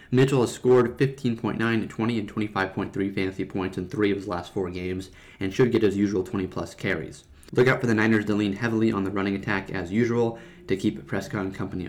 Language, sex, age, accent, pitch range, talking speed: English, male, 30-49, American, 95-120 Hz, 205 wpm